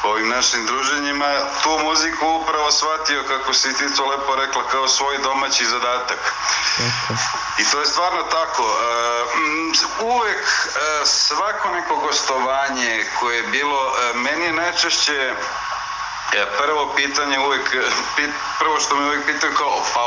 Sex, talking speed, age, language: male, 125 wpm, 50-69, German